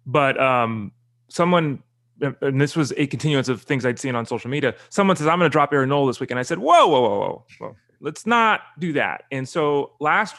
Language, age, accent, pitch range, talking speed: English, 30-49, American, 130-175 Hz, 225 wpm